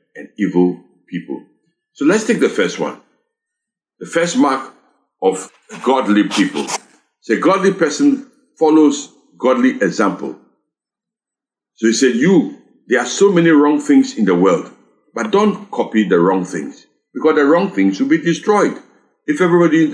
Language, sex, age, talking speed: English, male, 60-79, 150 wpm